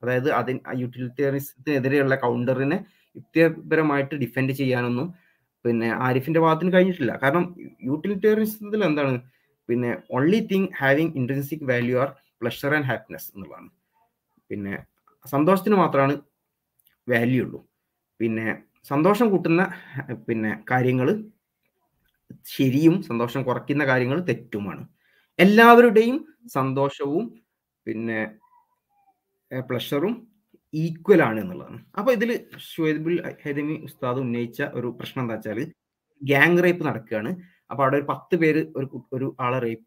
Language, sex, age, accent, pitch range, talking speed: Malayalam, male, 20-39, native, 125-180 Hz, 100 wpm